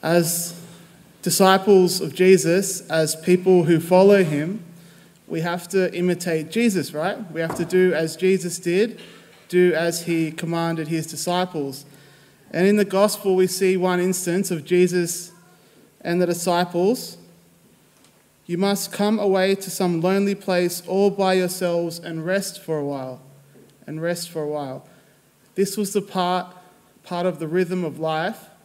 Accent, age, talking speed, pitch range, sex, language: Australian, 20-39, 150 wpm, 160-185 Hz, male, English